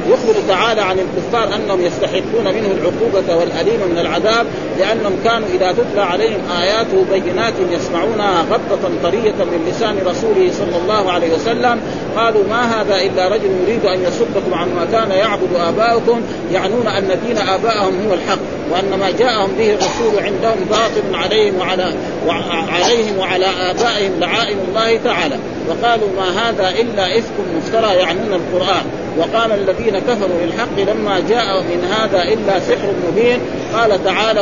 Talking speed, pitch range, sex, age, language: 145 wpm, 185-230 Hz, male, 40-59, Arabic